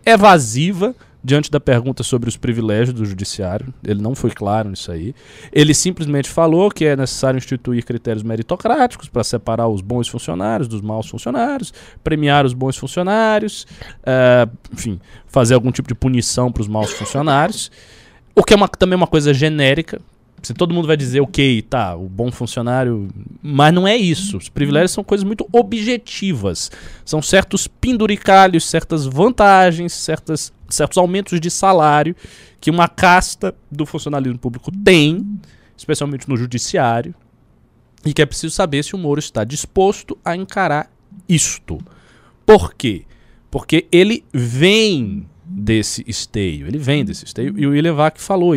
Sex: male